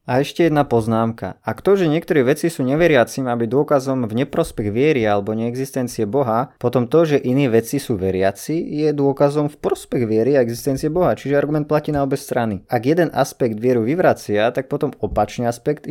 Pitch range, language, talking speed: 115-145 Hz, Slovak, 185 wpm